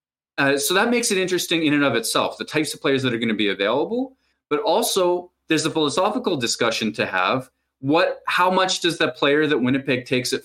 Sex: male